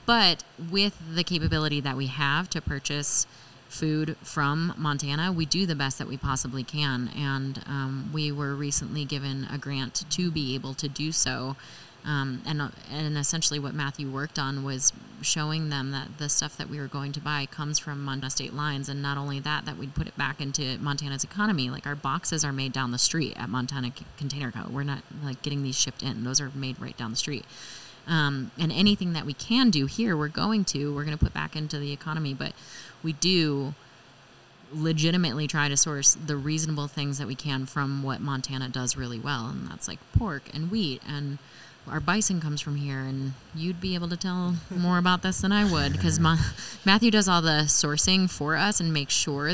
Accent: American